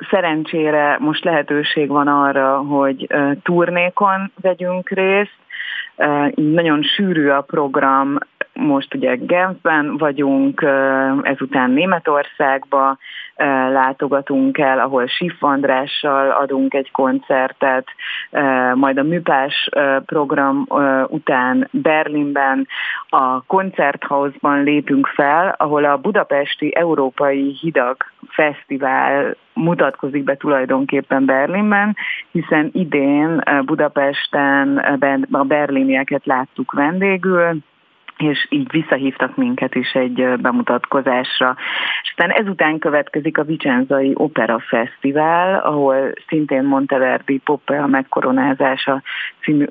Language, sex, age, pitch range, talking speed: Hungarian, female, 30-49, 135-160 Hz, 90 wpm